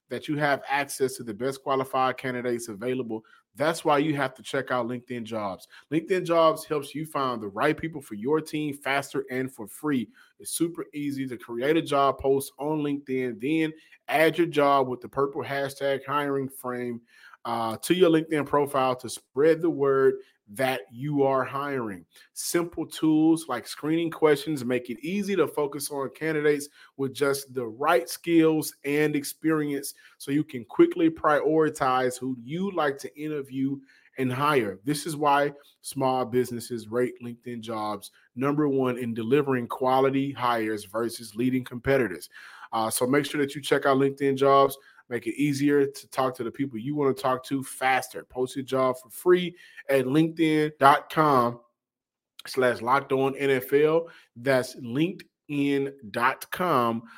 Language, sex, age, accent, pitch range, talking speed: English, male, 30-49, American, 125-150 Hz, 160 wpm